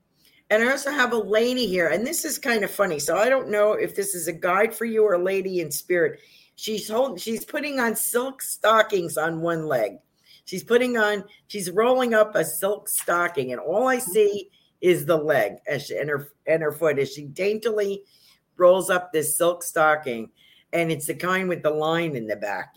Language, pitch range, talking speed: English, 155-210 Hz, 205 wpm